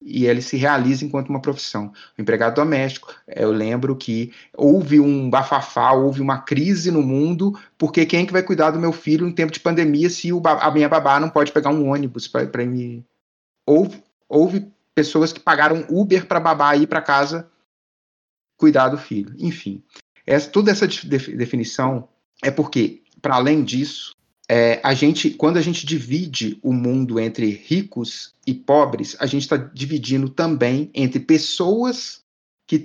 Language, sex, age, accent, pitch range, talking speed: Portuguese, male, 30-49, Brazilian, 130-155 Hz, 170 wpm